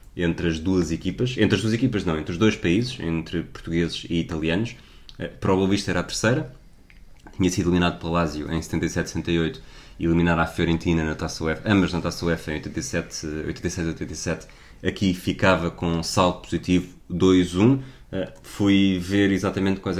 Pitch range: 80-95 Hz